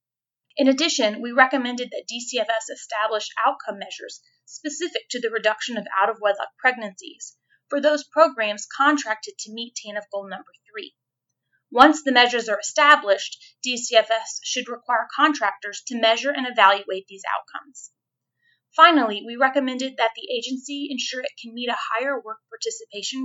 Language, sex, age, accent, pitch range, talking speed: English, female, 30-49, American, 210-285 Hz, 145 wpm